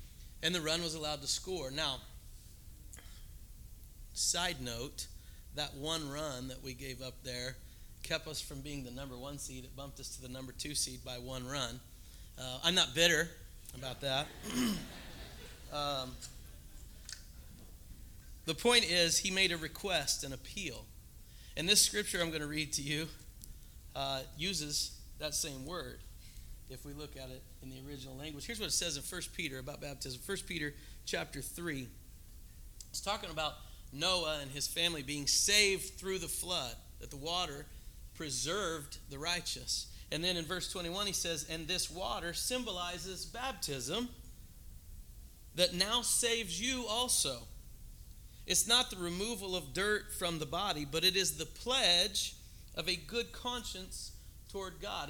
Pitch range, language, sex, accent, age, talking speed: 125-180 Hz, English, male, American, 30-49, 155 wpm